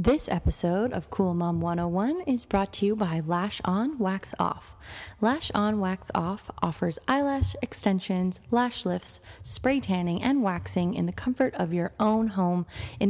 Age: 20-39